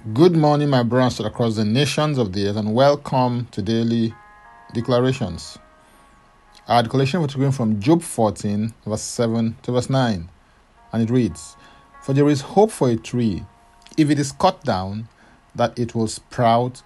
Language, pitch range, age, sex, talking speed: English, 110-145 Hz, 40-59, male, 165 wpm